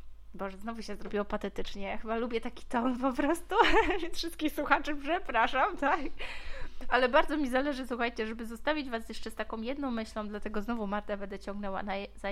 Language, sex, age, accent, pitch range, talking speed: Polish, female, 20-39, native, 210-260 Hz, 180 wpm